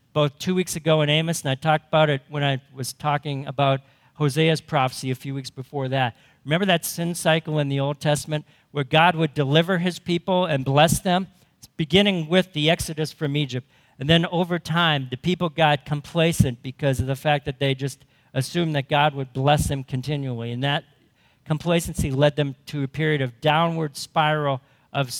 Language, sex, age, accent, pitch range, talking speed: English, male, 50-69, American, 135-160 Hz, 195 wpm